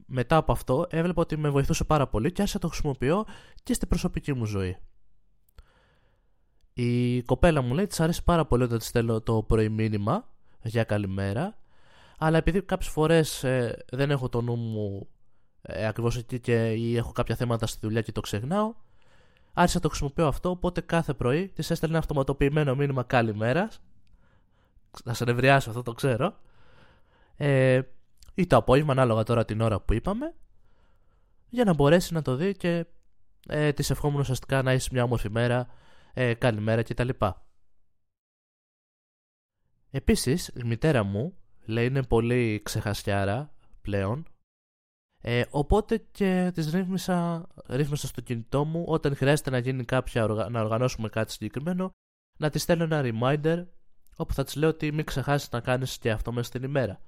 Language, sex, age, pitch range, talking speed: Greek, male, 20-39, 115-160 Hz, 160 wpm